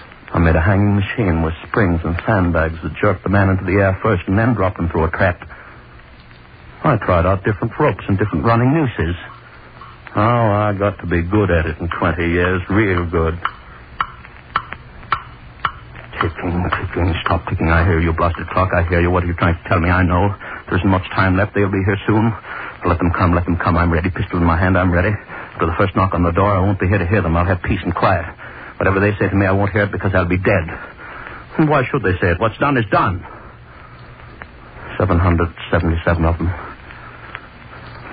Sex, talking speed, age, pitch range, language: male, 210 wpm, 60-79, 85-105 Hz, English